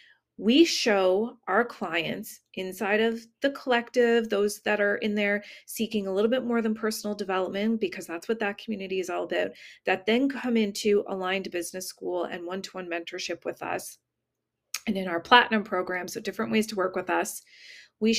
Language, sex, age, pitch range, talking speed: English, female, 30-49, 195-240 Hz, 180 wpm